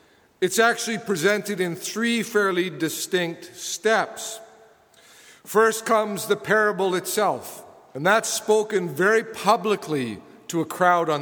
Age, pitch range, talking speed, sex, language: 50-69, 160-215 Hz, 120 wpm, male, English